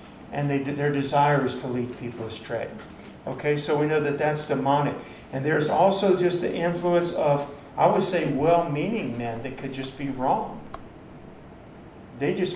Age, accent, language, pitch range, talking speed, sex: 50-69, American, English, 135-155 Hz, 160 wpm, male